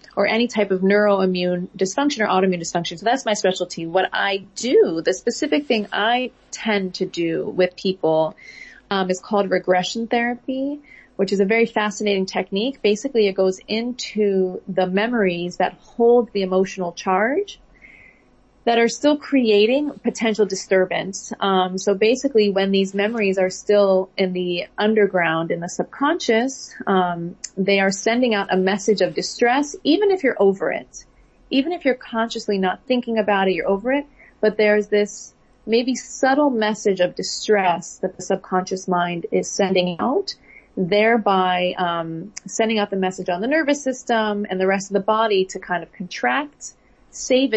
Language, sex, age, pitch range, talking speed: English, female, 30-49, 185-230 Hz, 160 wpm